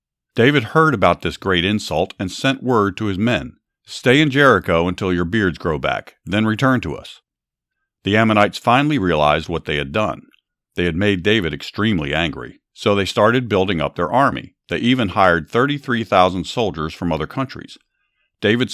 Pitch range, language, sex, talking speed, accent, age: 85-115 Hz, English, male, 175 wpm, American, 50-69